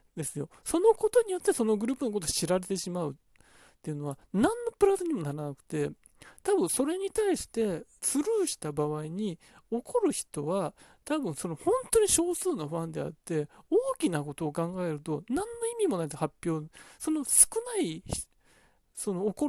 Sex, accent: male, native